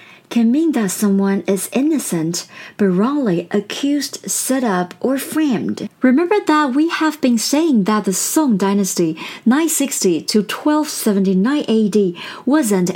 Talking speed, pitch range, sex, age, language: 125 wpm, 195-265 Hz, female, 40-59, English